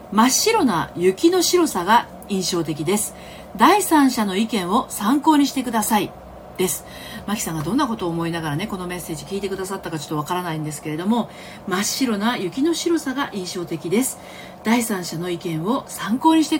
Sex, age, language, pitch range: female, 40-59, Japanese, 160-265 Hz